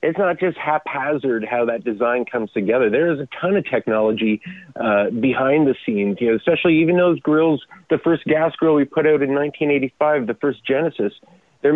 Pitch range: 115-150 Hz